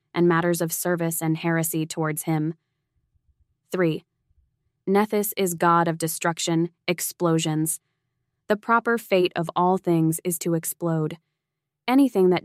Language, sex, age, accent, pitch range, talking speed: English, female, 20-39, American, 160-185 Hz, 125 wpm